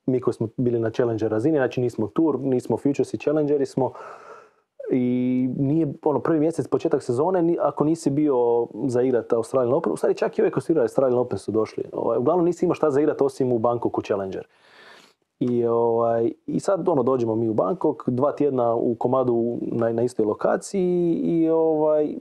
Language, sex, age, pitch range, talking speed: Croatian, male, 30-49, 120-165 Hz, 180 wpm